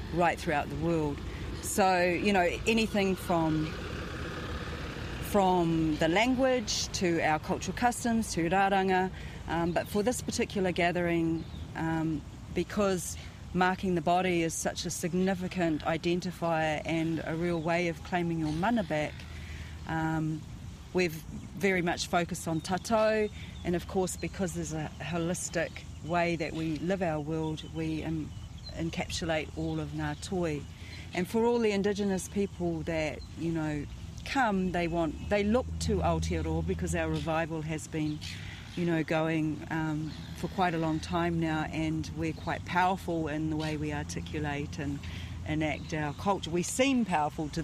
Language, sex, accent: English, female, Australian